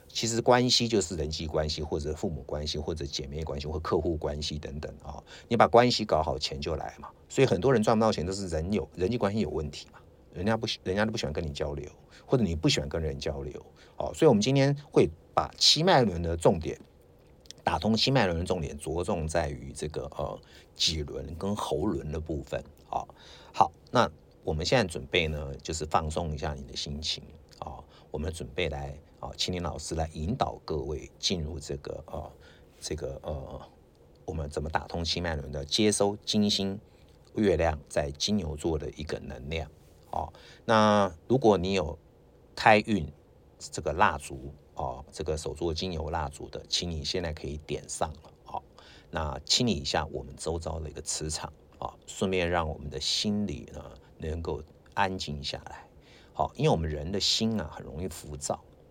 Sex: male